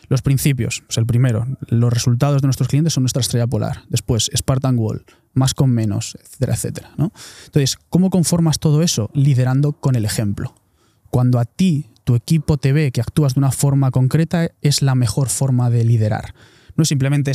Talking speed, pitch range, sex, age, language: 180 wpm, 125-150 Hz, male, 20-39, Spanish